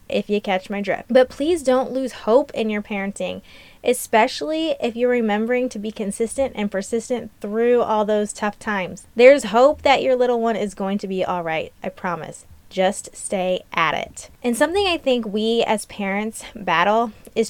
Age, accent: 20-39, American